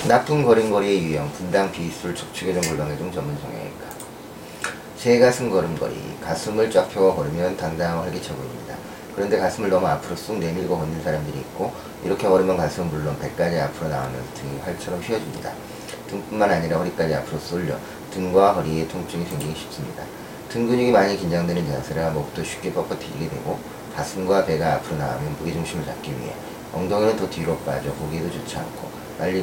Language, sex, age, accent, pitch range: Korean, male, 30-49, native, 75-95 Hz